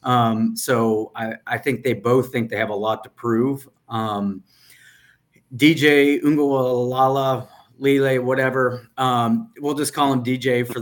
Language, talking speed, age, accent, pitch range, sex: English, 145 wpm, 30-49, American, 115-135 Hz, male